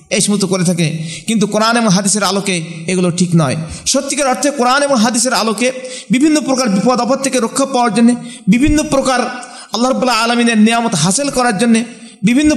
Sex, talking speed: male, 155 wpm